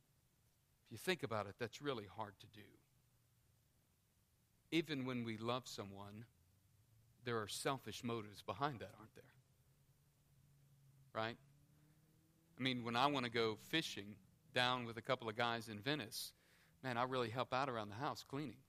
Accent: American